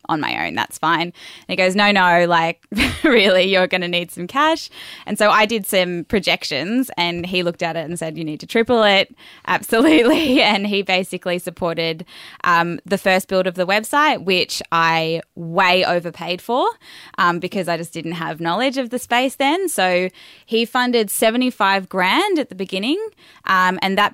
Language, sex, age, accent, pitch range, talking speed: English, female, 10-29, Australian, 175-210 Hz, 185 wpm